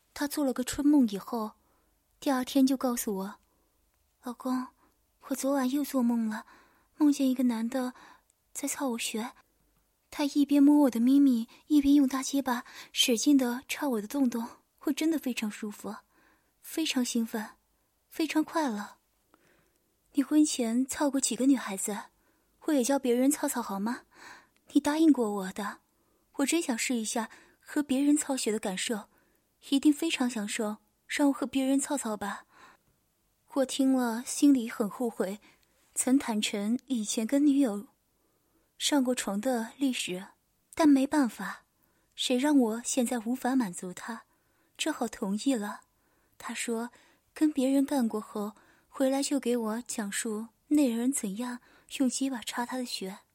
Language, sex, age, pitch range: Chinese, female, 20-39, 230-280 Hz